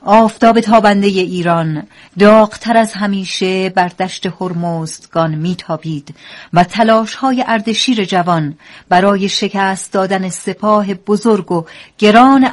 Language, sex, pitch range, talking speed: Persian, female, 170-215 Hz, 110 wpm